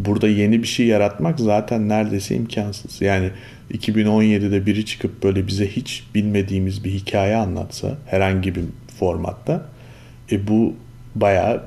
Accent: native